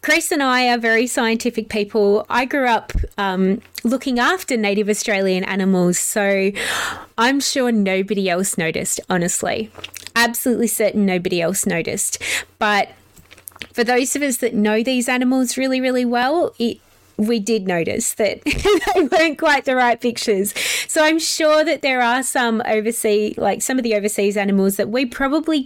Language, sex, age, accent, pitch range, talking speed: English, female, 20-39, Australian, 205-260 Hz, 155 wpm